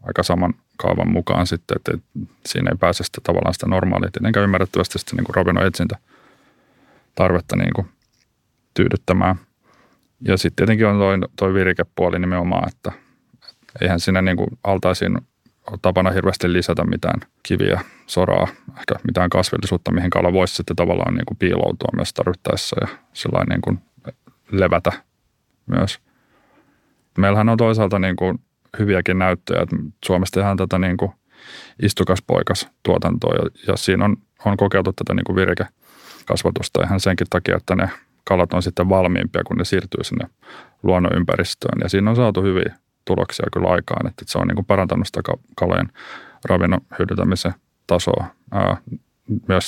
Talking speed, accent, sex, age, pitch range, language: 130 wpm, native, male, 30-49, 90-100 Hz, Finnish